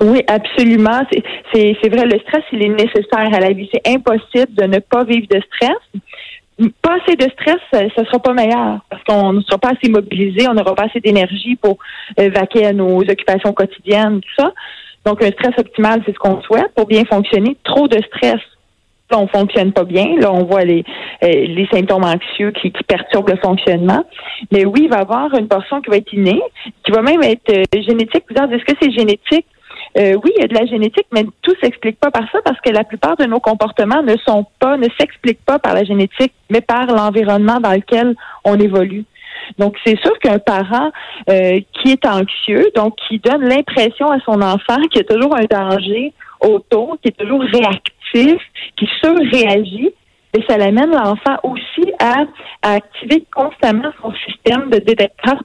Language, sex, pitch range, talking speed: French, female, 205-255 Hz, 200 wpm